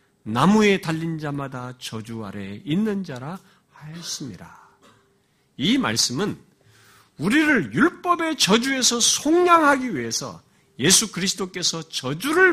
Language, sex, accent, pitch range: Korean, male, native, 150-245 Hz